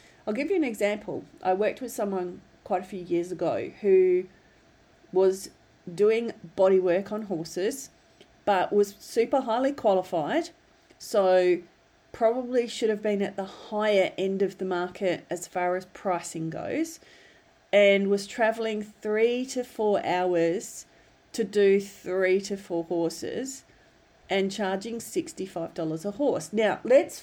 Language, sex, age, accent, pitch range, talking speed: English, female, 40-59, Australian, 180-220 Hz, 140 wpm